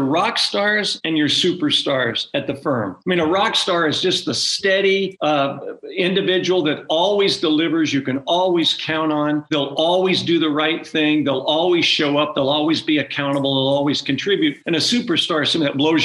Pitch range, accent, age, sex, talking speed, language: 145-175 Hz, American, 50-69, male, 190 wpm, English